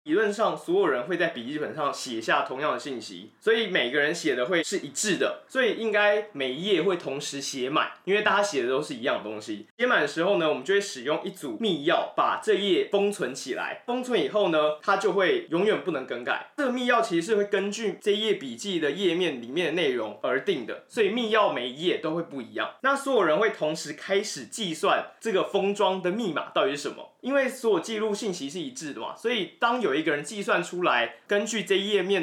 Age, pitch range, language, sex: 20-39, 165-225 Hz, Chinese, male